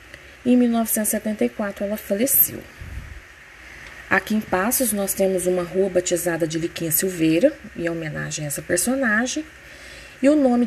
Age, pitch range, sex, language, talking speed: 20-39, 180-235 Hz, female, Portuguese, 130 wpm